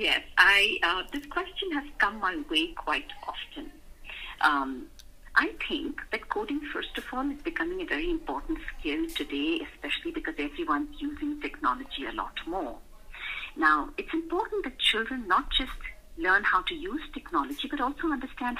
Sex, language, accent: female, English, Indian